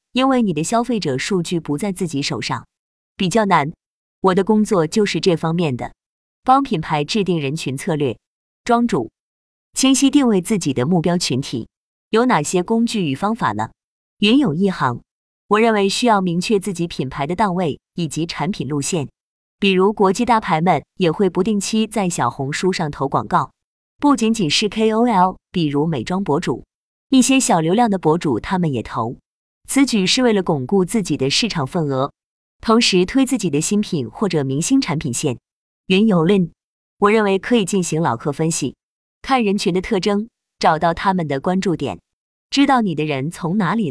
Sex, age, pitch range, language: female, 20-39, 155-215 Hz, Chinese